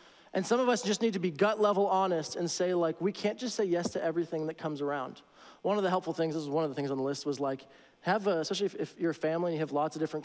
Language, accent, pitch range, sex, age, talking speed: English, American, 155-190 Hz, male, 20-39, 315 wpm